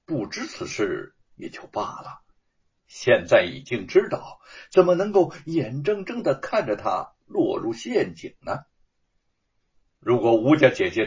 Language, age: Chinese, 60-79